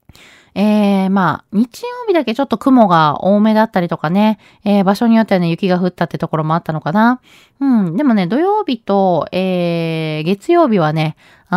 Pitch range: 180-245 Hz